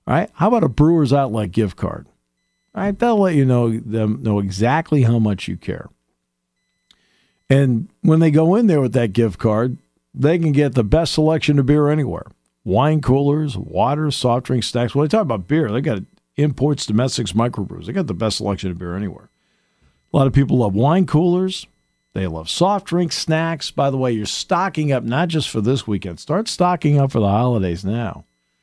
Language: English